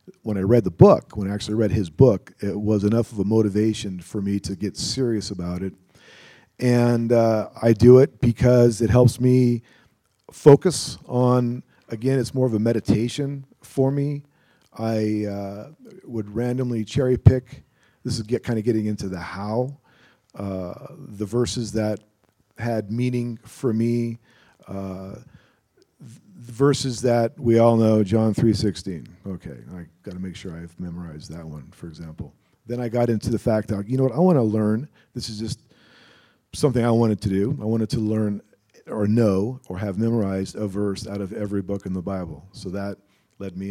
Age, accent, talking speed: 40-59, American, 180 wpm